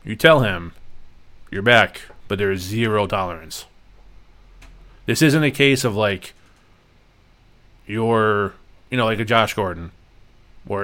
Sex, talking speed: male, 135 wpm